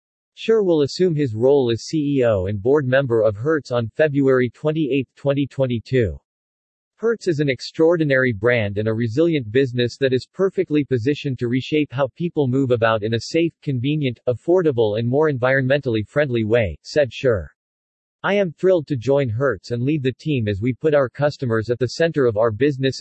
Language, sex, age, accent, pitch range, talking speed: English, male, 50-69, American, 120-150 Hz, 175 wpm